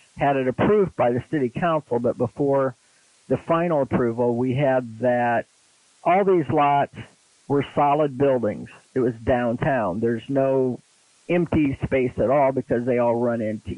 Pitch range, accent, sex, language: 125-145 Hz, American, male, English